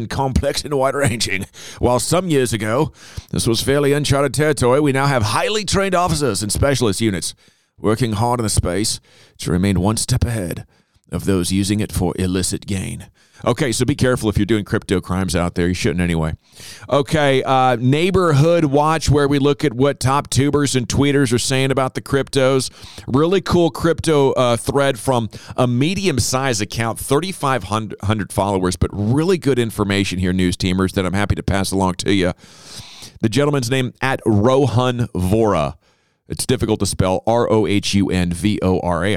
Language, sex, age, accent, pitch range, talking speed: English, male, 40-59, American, 95-135 Hz, 165 wpm